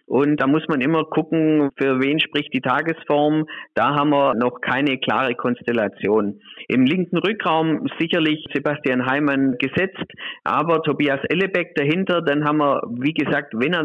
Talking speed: 155 wpm